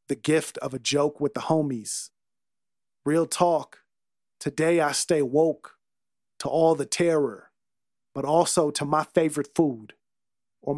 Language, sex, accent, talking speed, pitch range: English, male, American, 140 wpm, 130-160 Hz